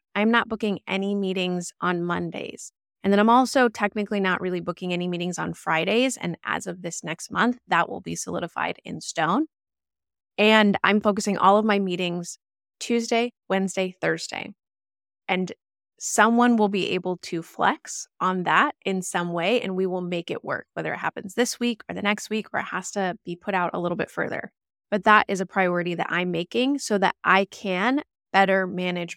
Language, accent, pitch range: English, American, 180-215 Hz